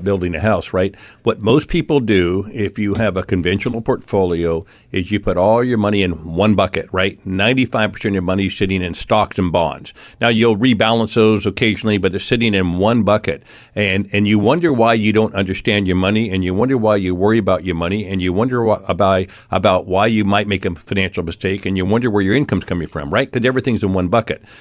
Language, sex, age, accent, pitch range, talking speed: English, male, 50-69, American, 100-125 Hz, 220 wpm